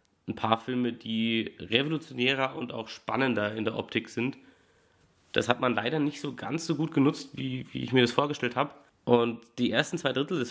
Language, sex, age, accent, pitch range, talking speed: German, male, 30-49, German, 115-150 Hz, 200 wpm